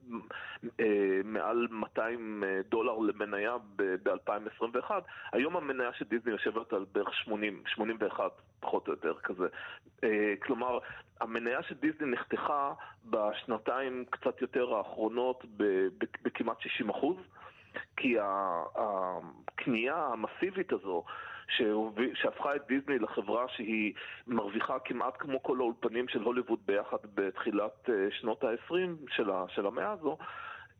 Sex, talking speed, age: male, 115 wpm, 30-49